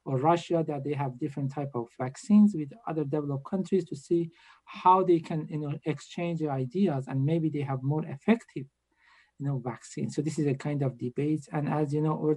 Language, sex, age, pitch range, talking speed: English, male, 50-69, 140-165 Hz, 205 wpm